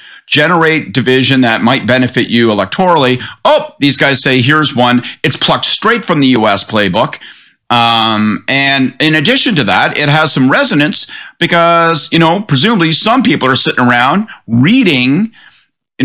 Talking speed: 155 wpm